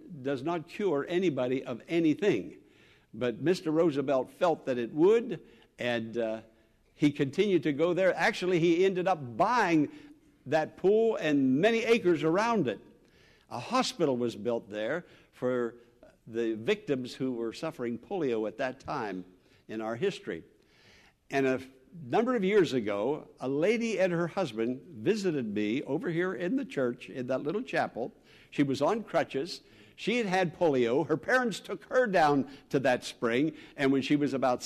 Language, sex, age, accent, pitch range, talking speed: English, male, 60-79, American, 120-180 Hz, 160 wpm